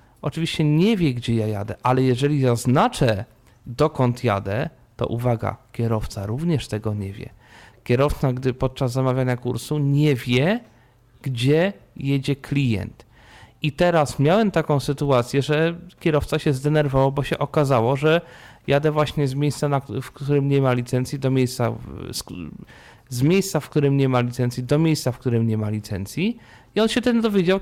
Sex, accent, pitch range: male, native, 125-160 Hz